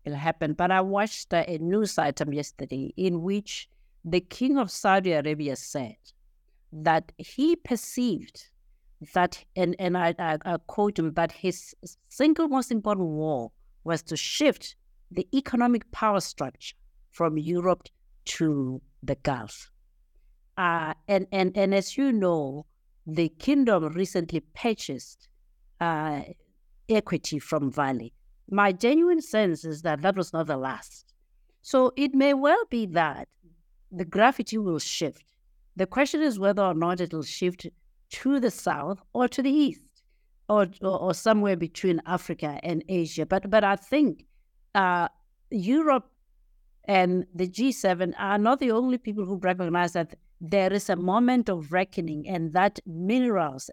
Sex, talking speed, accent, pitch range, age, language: female, 145 wpm, South African, 160-215 Hz, 50-69, English